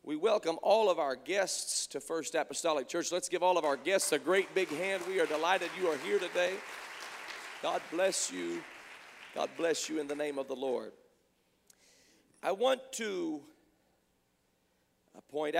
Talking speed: 165 wpm